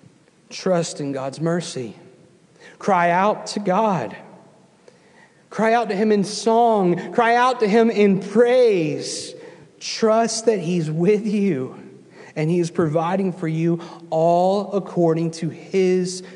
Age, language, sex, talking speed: 40-59, English, male, 130 wpm